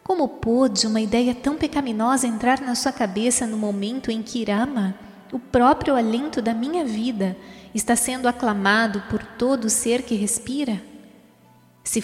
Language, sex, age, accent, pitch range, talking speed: Portuguese, female, 20-39, Brazilian, 190-235 Hz, 150 wpm